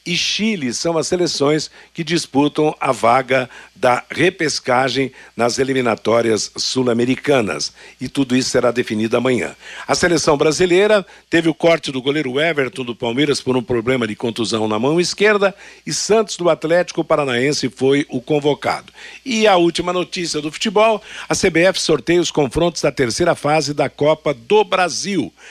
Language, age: Portuguese, 60-79